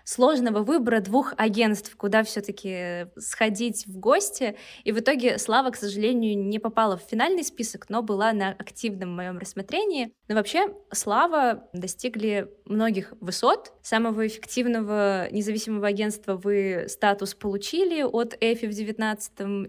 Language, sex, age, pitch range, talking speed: Russian, female, 20-39, 205-245 Hz, 130 wpm